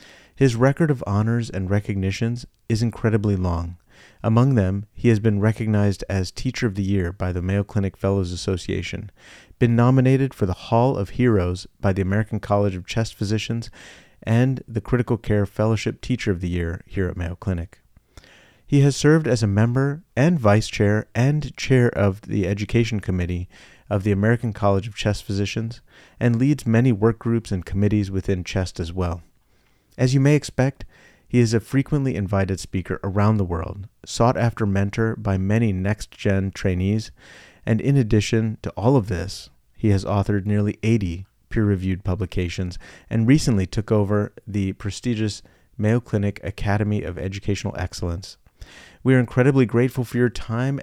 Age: 30-49